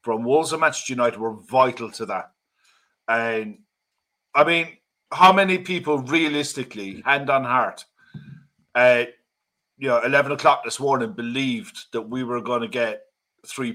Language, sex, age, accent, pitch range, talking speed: English, male, 50-69, British, 120-160 Hz, 145 wpm